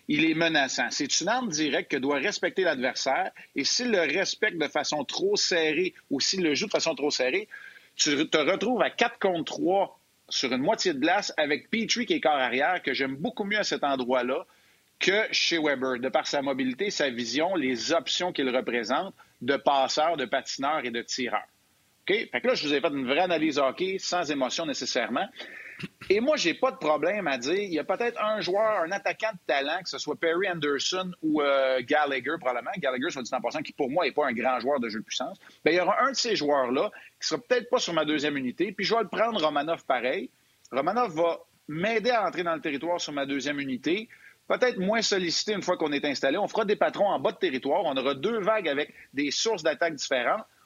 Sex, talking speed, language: male, 225 wpm, French